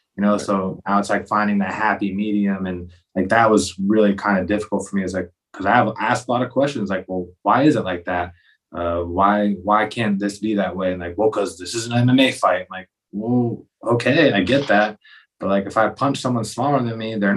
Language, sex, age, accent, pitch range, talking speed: English, male, 20-39, American, 95-125 Hz, 240 wpm